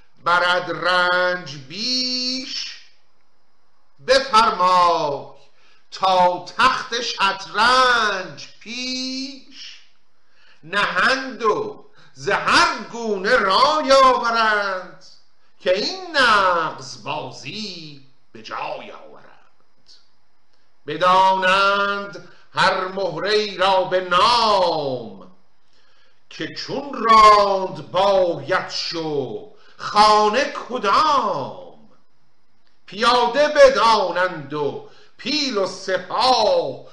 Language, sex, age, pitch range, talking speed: Persian, male, 50-69, 160-235 Hz, 65 wpm